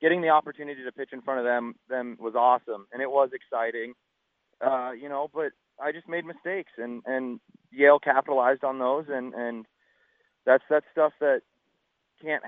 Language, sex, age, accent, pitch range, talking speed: English, male, 30-49, American, 120-140 Hz, 175 wpm